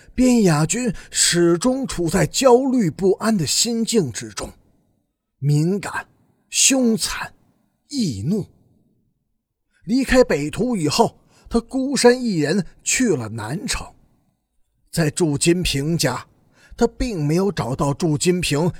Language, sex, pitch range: Chinese, male, 155-230 Hz